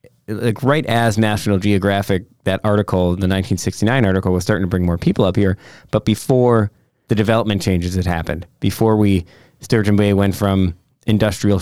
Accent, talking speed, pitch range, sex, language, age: American, 165 wpm, 95-110 Hz, male, English, 20-39